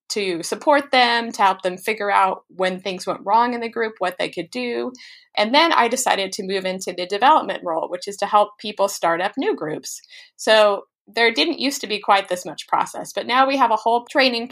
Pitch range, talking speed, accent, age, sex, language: 185-230 Hz, 225 wpm, American, 30-49, female, English